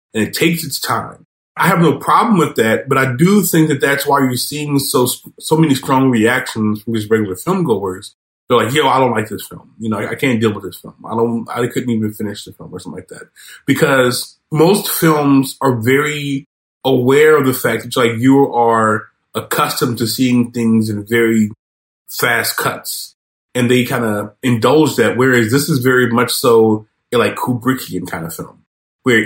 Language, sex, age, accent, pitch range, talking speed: English, male, 30-49, American, 115-145 Hz, 200 wpm